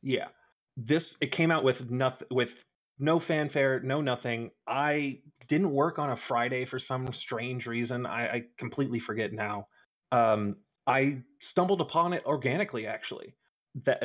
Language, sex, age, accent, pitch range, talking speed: English, male, 30-49, American, 120-140 Hz, 150 wpm